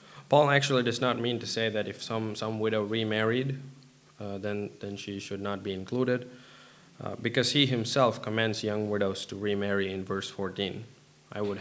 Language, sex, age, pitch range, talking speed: English, male, 20-39, 105-125 Hz, 180 wpm